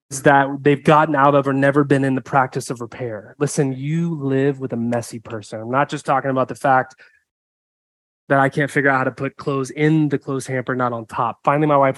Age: 20-39